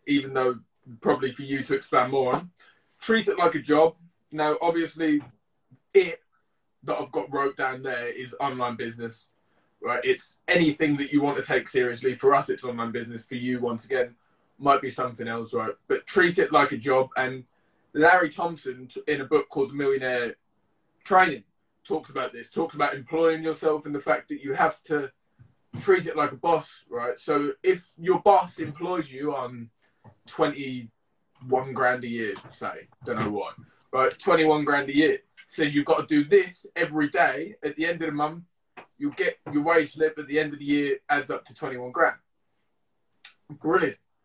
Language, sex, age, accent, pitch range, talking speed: English, male, 20-39, British, 130-165 Hz, 185 wpm